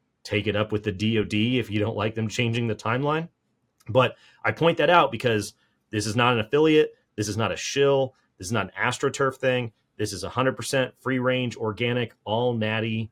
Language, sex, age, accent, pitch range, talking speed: English, male, 30-49, American, 100-125 Hz, 190 wpm